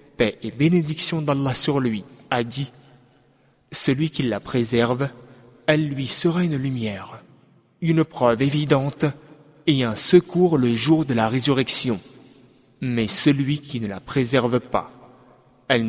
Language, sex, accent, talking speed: French, male, French, 130 wpm